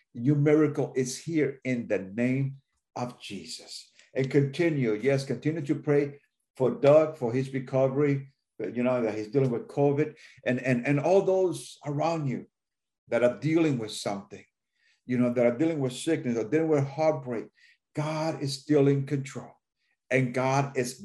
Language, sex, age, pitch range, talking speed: English, male, 50-69, 115-145 Hz, 165 wpm